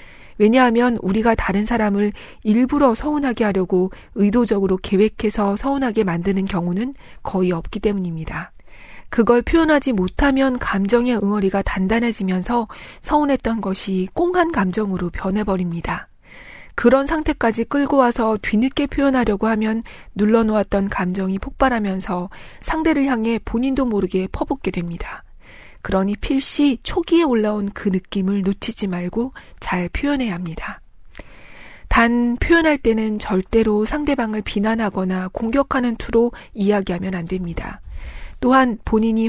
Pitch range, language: 195-255 Hz, Korean